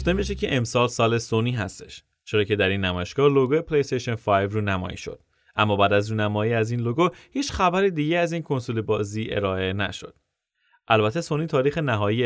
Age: 30-49